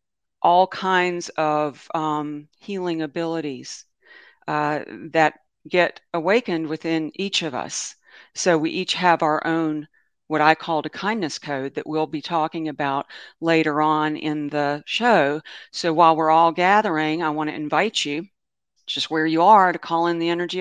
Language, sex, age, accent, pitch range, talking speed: English, female, 50-69, American, 150-180 Hz, 160 wpm